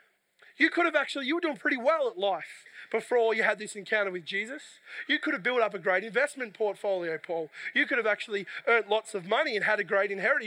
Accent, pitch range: Australian, 195-235 Hz